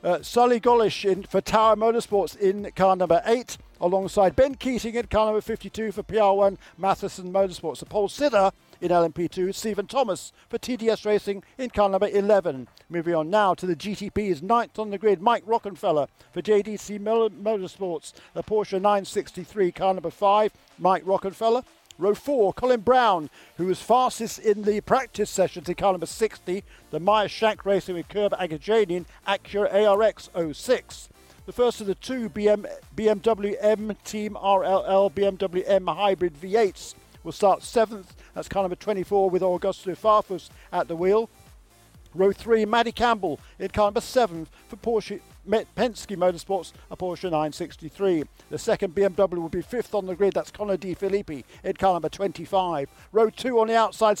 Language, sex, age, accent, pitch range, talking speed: English, male, 50-69, British, 185-220 Hz, 165 wpm